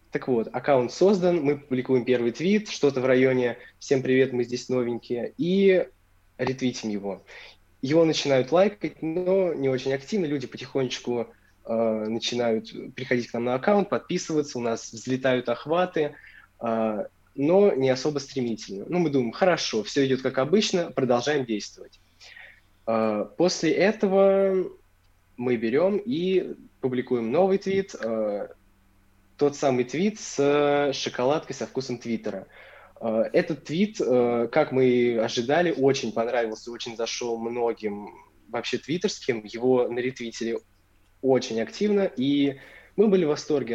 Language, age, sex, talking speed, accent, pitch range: Russian, 20-39, male, 130 wpm, native, 115-150 Hz